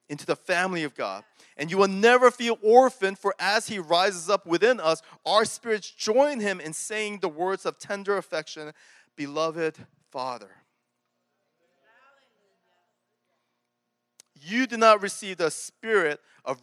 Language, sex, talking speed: English, male, 135 wpm